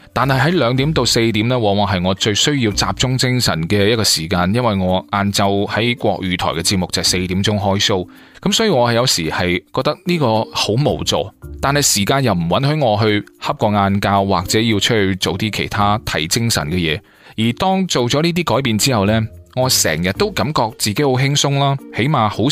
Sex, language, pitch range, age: male, Chinese, 95-130 Hz, 20-39